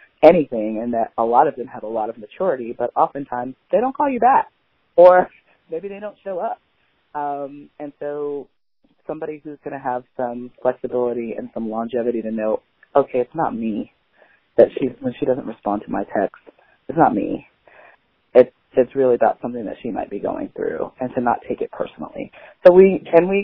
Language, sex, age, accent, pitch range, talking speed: English, female, 30-49, American, 120-165 Hz, 195 wpm